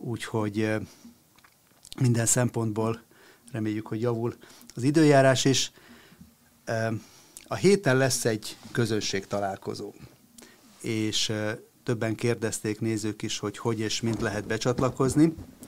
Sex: male